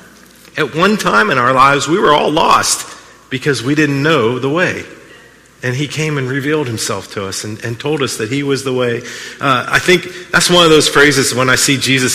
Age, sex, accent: 40-59, male, American